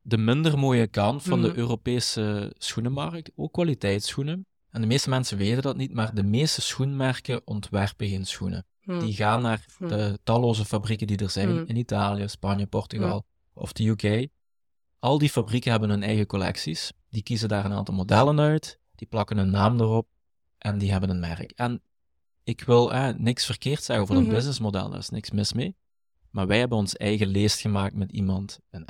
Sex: male